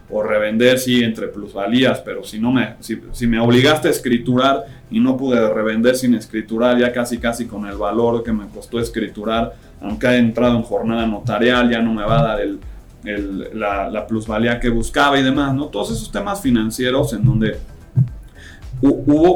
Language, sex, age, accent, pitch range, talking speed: Spanish, male, 30-49, Mexican, 110-130 Hz, 190 wpm